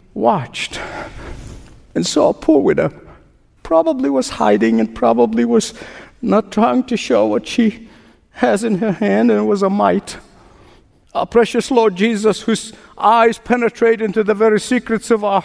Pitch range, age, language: 165-270 Hz, 60-79, English